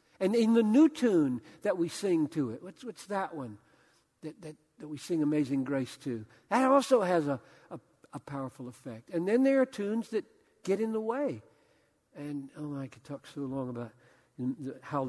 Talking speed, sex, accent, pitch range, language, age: 195 wpm, male, American, 135-190 Hz, English, 60-79